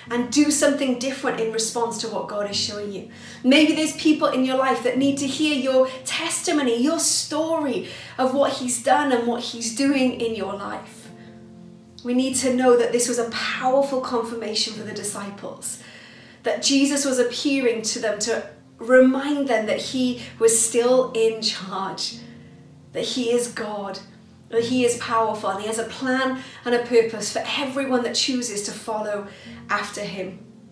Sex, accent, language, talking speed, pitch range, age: female, British, English, 170 wpm, 215-260 Hz, 30-49